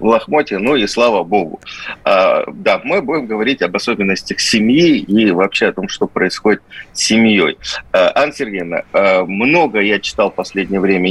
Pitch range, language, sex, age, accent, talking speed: 100-140 Hz, Russian, male, 30-49, native, 155 wpm